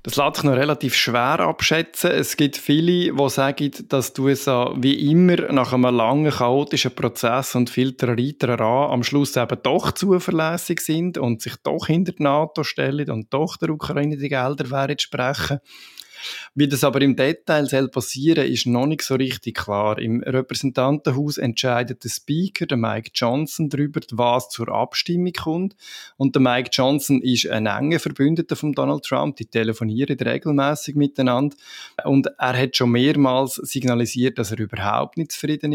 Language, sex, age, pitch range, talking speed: German, male, 20-39, 120-145 Hz, 165 wpm